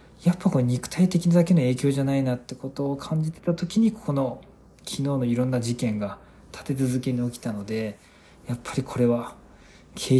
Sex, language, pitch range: male, Japanese, 120-165 Hz